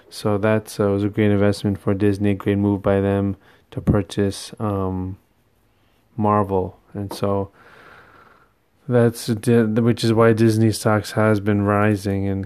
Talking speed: 140 wpm